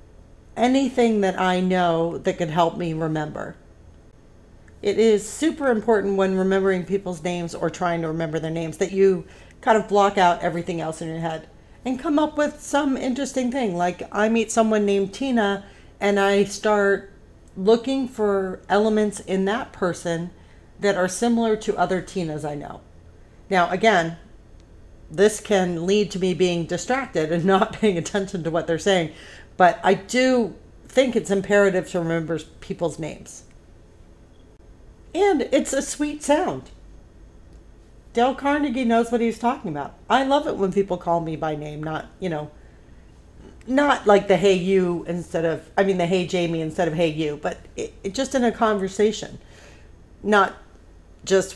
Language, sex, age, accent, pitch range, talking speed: English, female, 50-69, American, 165-215 Hz, 160 wpm